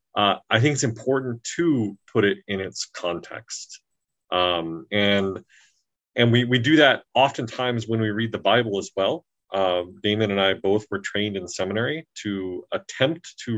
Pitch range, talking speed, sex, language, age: 100-120 Hz, 170 wpm, male, English, 30-49